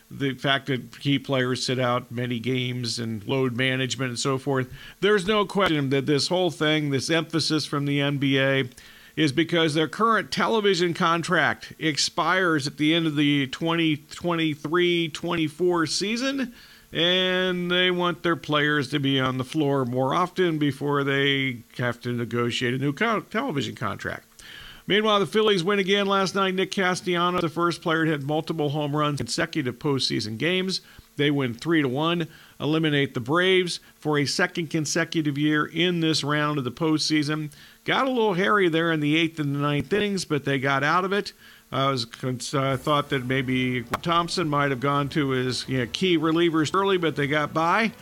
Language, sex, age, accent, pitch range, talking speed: English, male, 50-69, American, 135-175 Hz, 175 wpm